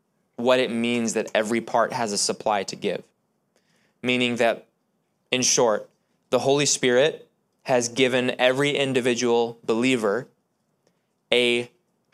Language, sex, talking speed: English, male, 120 wpm